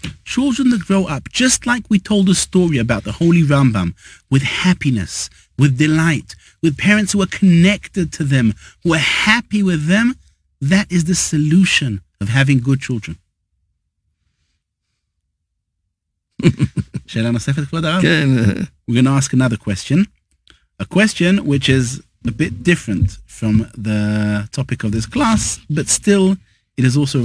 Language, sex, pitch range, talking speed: English, male, 105-165 Hz, 130 wpm